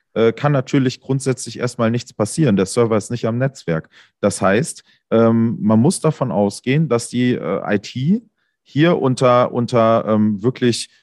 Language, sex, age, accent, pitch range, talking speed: German, male, 30-49, German, 105-130 Hz, 135 wpm